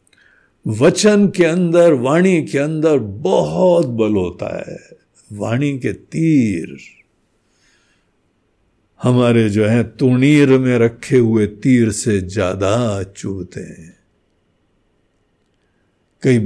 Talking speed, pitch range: 95 wpm, 105-175 Hz